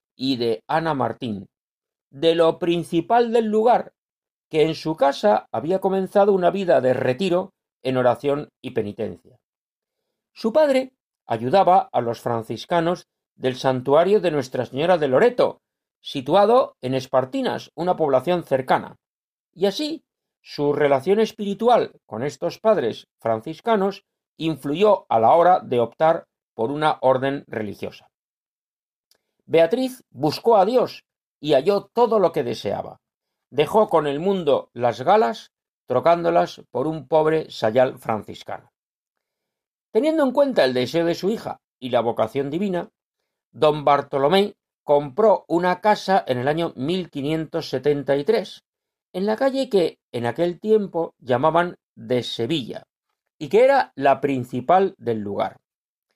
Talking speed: 130 wpm